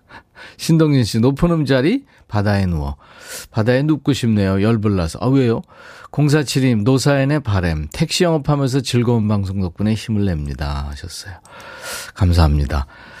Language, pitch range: Korean, 100-150 Hz